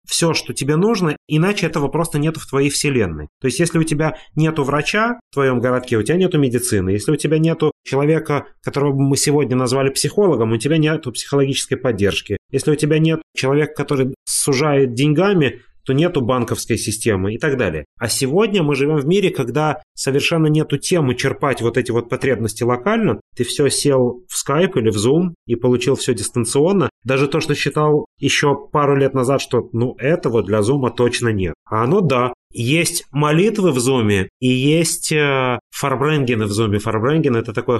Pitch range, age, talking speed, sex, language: 120-150 Hz, 30-49, 180 wpm, male, Russian